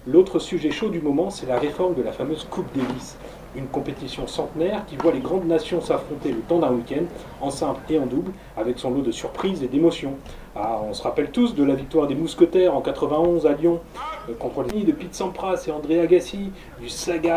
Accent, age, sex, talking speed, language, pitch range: French, 30-49, male, 220 wpm, French, 140-180 Hz